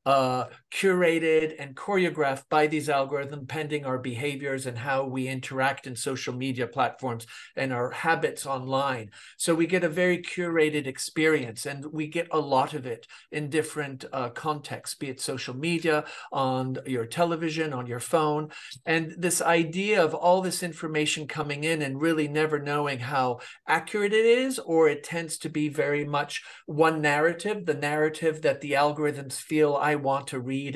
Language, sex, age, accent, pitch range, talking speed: English, male, 50-69, American, 140-165 Hz, 170 wpm